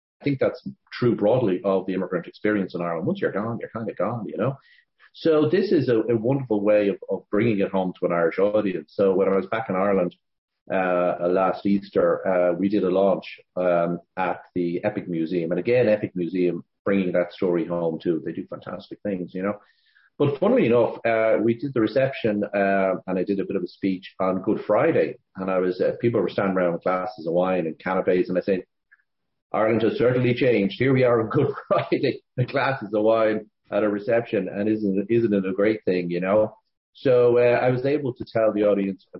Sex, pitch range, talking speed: male, 90-110 Hz, 220 wpm